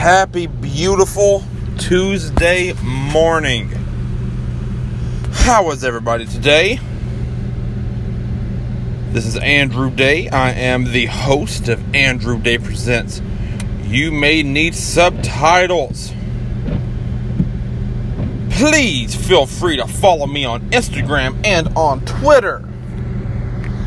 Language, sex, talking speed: English, male, 90 wpm